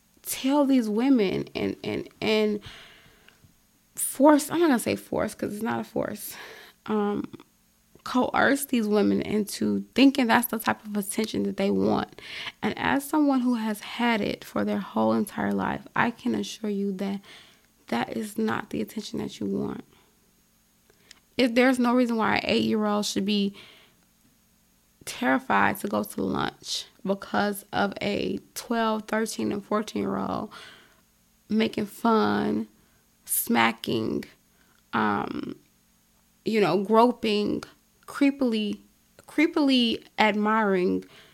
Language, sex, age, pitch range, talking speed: English, female, 20-39, 200-255 Hz, 130 wpm